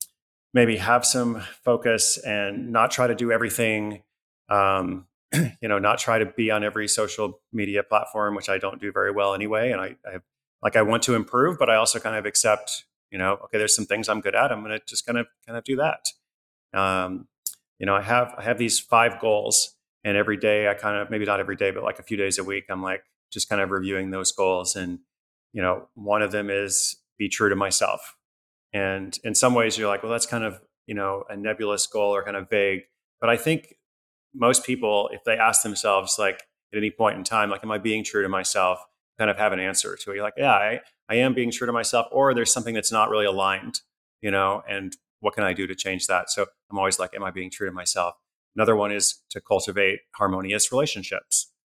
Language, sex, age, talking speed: English, male, 30-49, 230 wpm